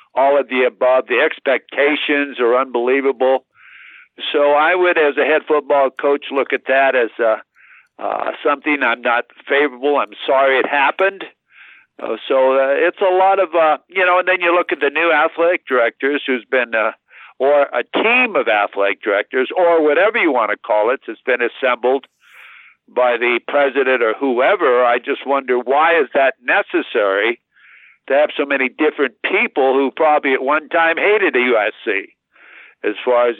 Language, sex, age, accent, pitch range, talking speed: English, male, 60-79, American, 130-155 Hz, 175 wpm